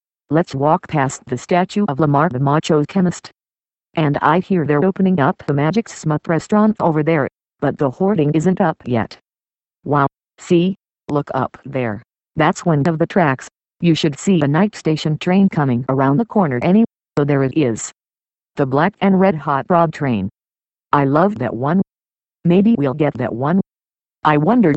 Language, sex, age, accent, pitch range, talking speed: English, female, 50-69, American, 135-175 Hz, 180 wpm